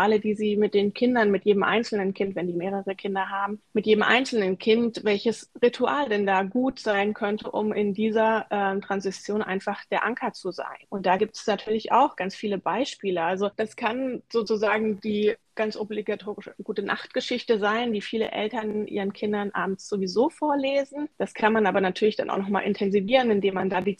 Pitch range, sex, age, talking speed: 200-220 Hz, female, 20-39, 190 wpm